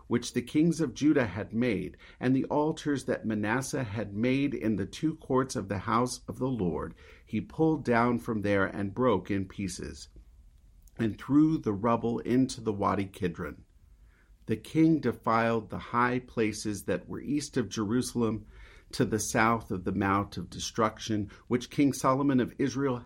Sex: male